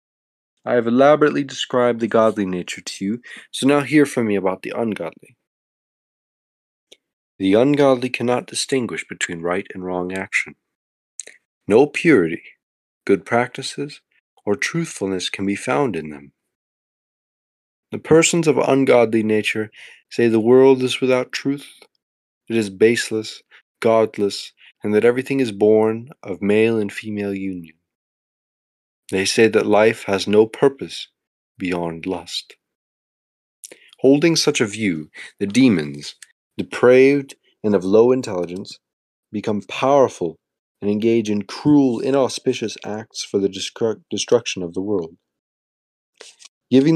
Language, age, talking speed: English, 30-49, 125 wpm